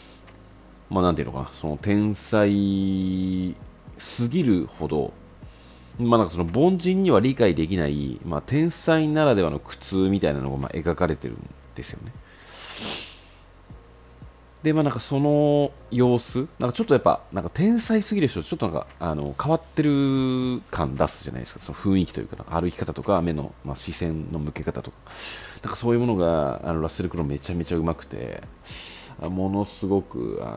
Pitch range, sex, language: 75-100 Hz, male, Japanese